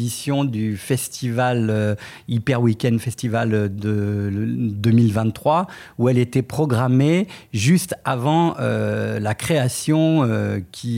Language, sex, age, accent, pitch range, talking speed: French, male, 50-69, French, 120-160 Hz, 105 wpm